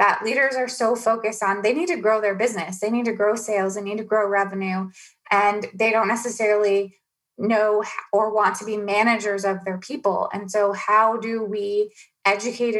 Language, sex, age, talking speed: English, female, 20-39, 190 wpm